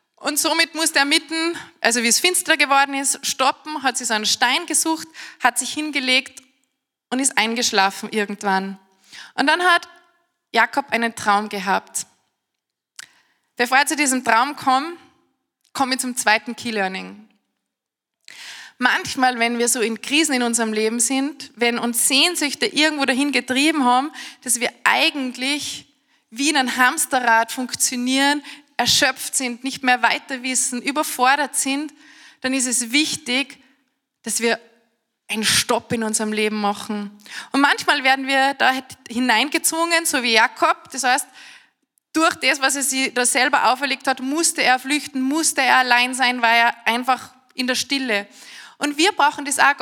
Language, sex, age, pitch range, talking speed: German, female, 20-39, 240-290 Hz, 150 wpm